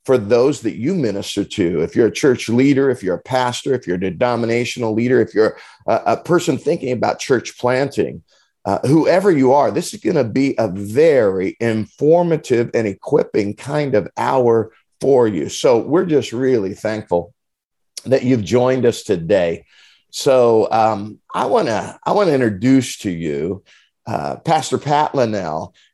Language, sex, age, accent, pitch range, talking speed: English, male, 50-69, American, 110-145 Hz, 170 wpm